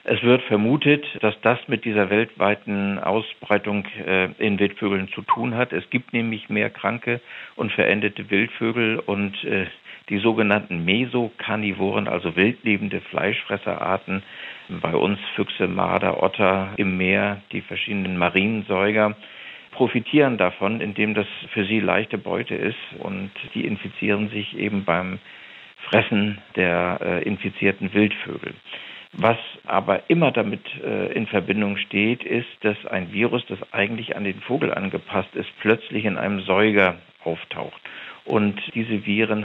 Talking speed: 130 wpm